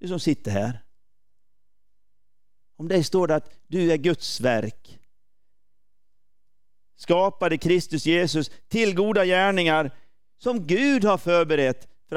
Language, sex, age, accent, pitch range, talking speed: Swedish, male, 40-59, native, 145-205 Hz, 120 wpm